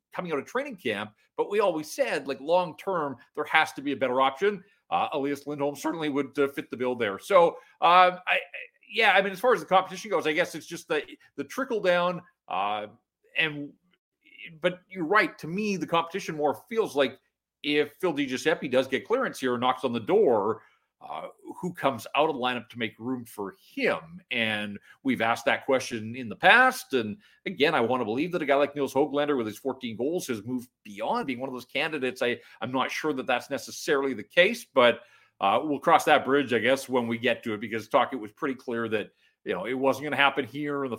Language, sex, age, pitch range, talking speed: English, male, 40-59, 130-180 Hz, 225 wpm